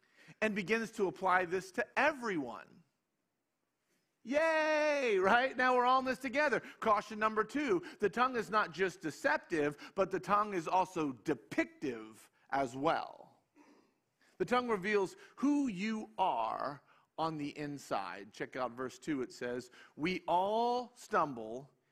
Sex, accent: male, American